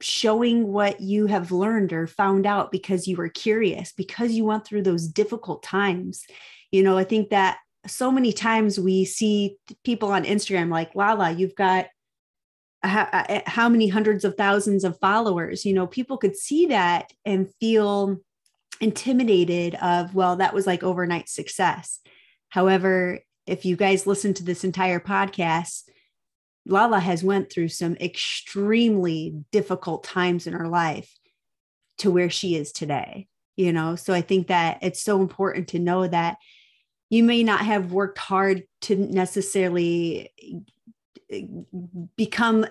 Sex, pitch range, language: female, 180-205 Hz, English